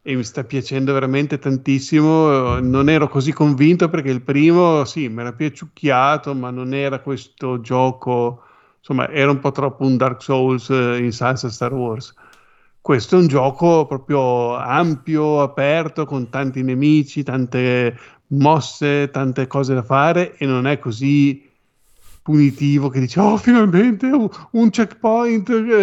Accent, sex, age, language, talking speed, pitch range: native, male, 50-69, Italian, 145 wpm, 130-155 Hz